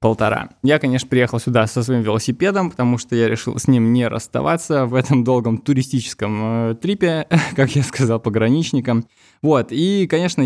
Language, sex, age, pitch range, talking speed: Russian, male, 20-39, 110-130 Hz, 160 wpm